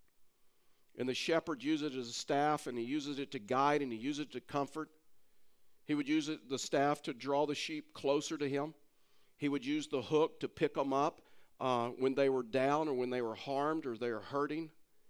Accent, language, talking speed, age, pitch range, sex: American, English, 220 wpm, 50-69, 130-155 Hz, male